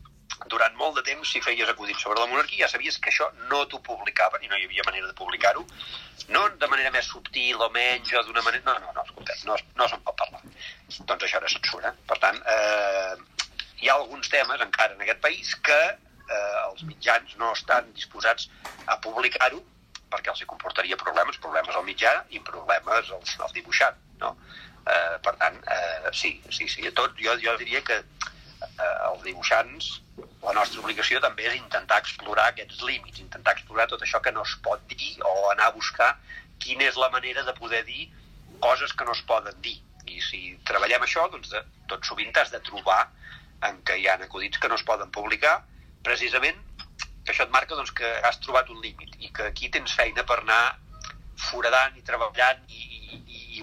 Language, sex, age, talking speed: Spanish, male, 50-69, 190 wpm